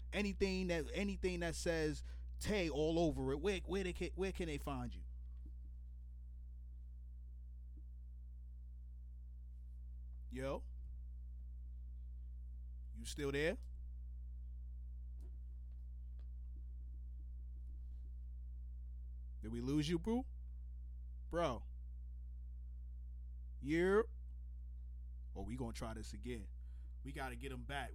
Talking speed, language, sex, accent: 90 wpm, English, male, American